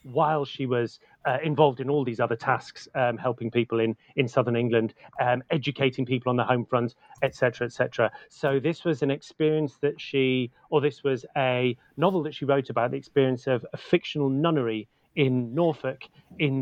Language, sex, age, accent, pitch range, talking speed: English, male, 30-49, British, 130-155 Hz, 190 wpm